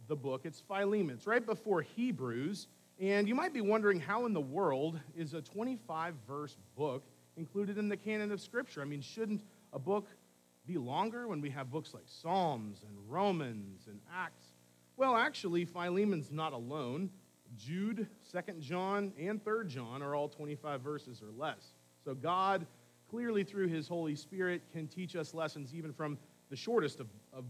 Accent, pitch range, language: American, 130-180 Hz, English